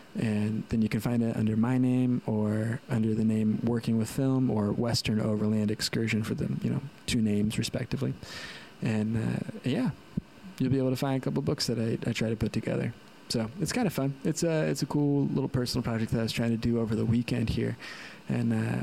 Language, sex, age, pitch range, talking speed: English, male, 20-39, 110-130 Hz, 220 wpm